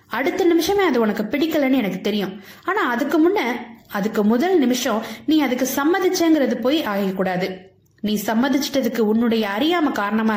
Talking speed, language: 135 wpm, Tamil